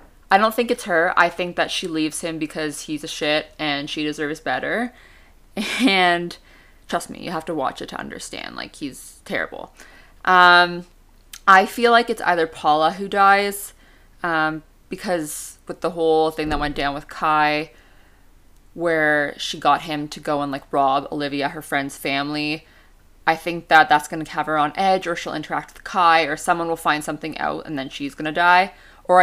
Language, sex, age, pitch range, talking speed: English, female, 20-39, 150-180 Hz, 190 wpm